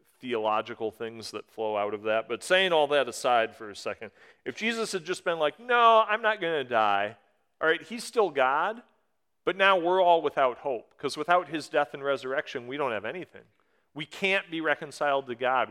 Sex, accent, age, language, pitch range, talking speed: male, American, 40-59, English, 115-170 Hz, 205 wpm